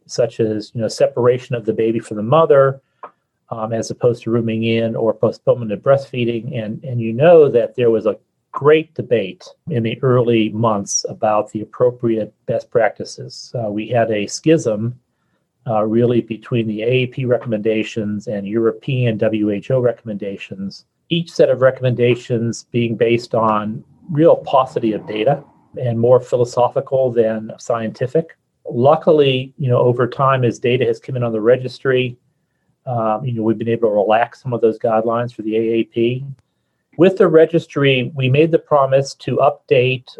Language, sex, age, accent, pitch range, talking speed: English, male, 40-59, American, 115-135 Hz, 160 wpm